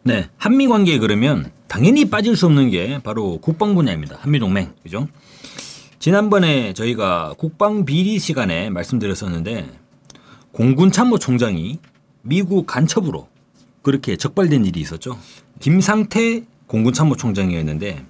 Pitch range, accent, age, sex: 130-200 Hz, native, 40-59, male